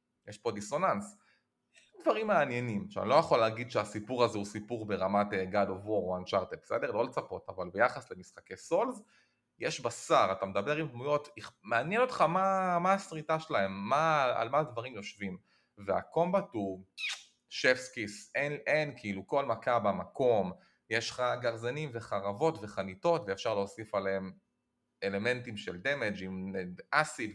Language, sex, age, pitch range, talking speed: Hebrew, male, 30-49, 100-145 Hz, 140 wpm